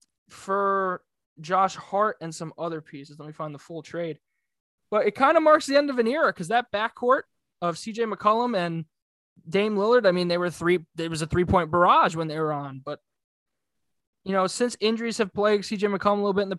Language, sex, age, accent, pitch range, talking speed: English, male, 20-39, American, 165-205 Hz, 220 wpm